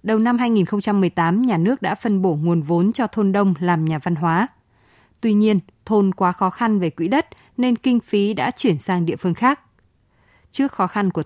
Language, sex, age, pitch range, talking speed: Vietnamese, female, 20-39, 175-220 Hz, 210 wpm